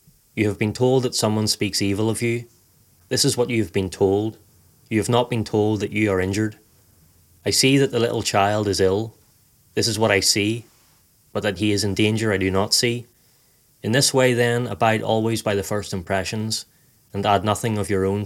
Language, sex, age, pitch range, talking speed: English, male, 30-49, 100-115 Hz, 215 wpm